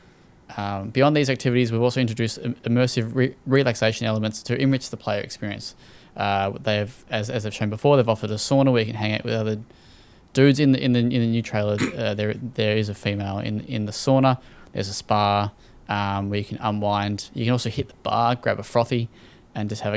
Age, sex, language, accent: 20-39, male, English, Australian